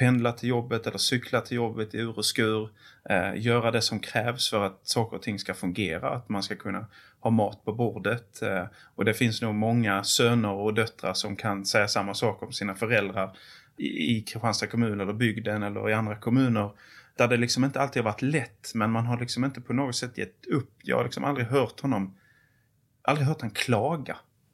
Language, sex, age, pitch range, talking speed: English, male, 30-49, 105-125 Hz, 205 wpm